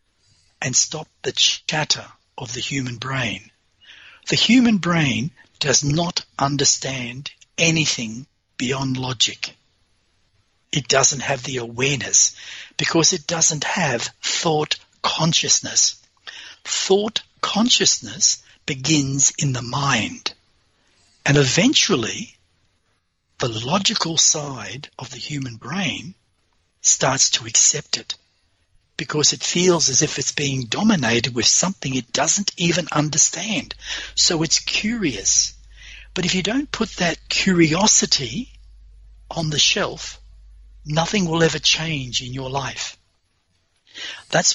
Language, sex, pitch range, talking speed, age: English, male, 110-160 Hz, 110 wpm, 60-79